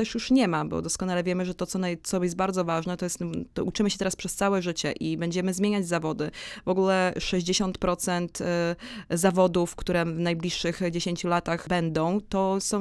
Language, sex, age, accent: Polish, female, 20-39, native